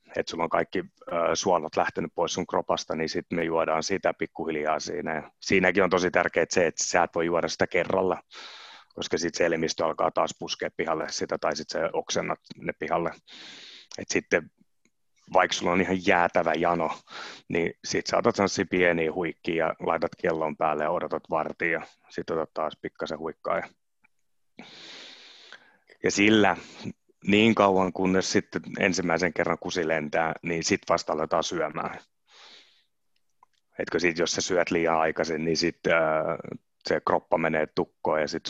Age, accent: 30-49, native